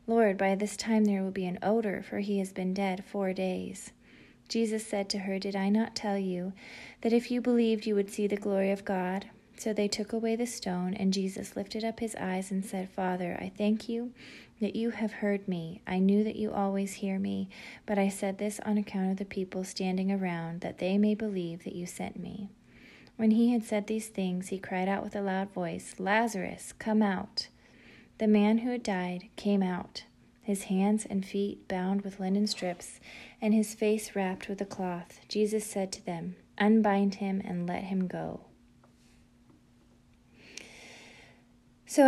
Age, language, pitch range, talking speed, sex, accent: 30-49, English, 190-215 Hz, 190 wpm, female, American